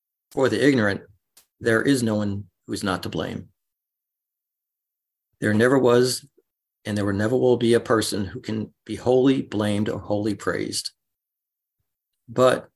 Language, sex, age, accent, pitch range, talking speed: English, male, 40-59, American, 105-115 Hz, 145 wpm